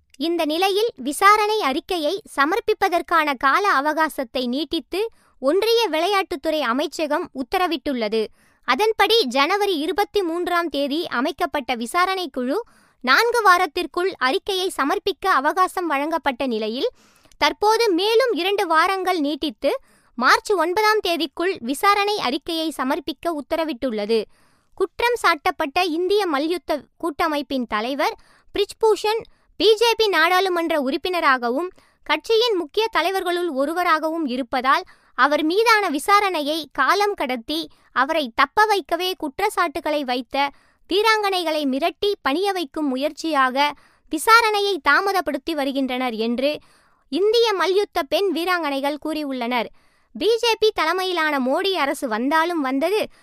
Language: Tamil